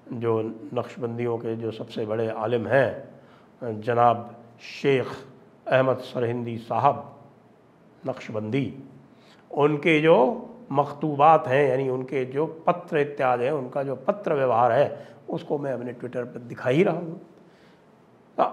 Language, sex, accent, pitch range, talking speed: English, male, Indian, 120-160 Hz, 125 wpm